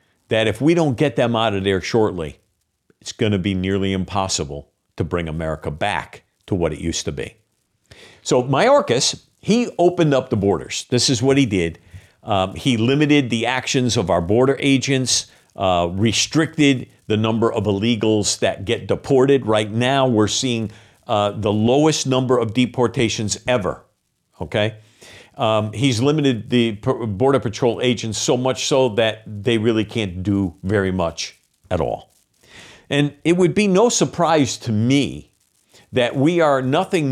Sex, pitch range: male, 100-135 Hz